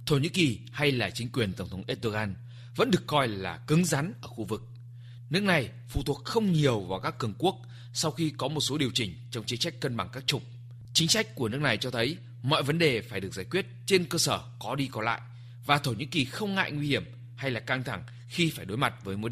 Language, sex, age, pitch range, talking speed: Vietnamese, male, 20-39, 120-150 Hz, 255 wpm